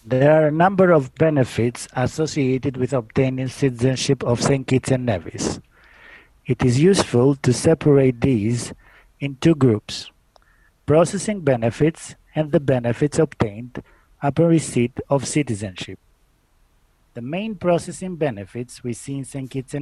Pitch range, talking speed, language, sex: 115-155 Hz, 125 wpm, English, male